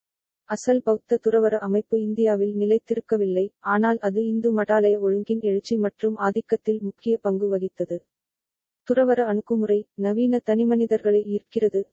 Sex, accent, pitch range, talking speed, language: female, native, 200-225 Hz, 110 wpm, Tamil